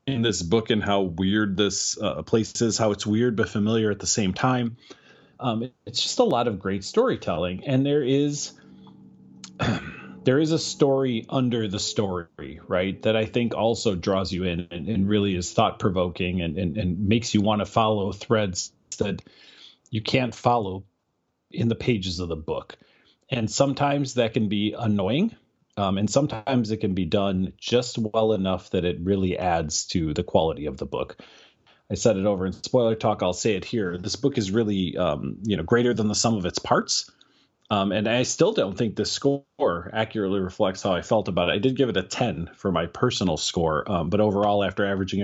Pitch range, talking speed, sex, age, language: 95-120 Hz, 200 wpm, male, 30-49, English